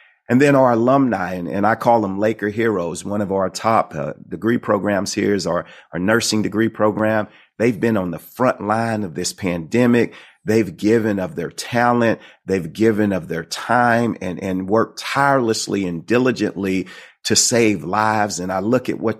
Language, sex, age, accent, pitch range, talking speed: English, male, 40-59, American, 100-120 Hz, 180 wpm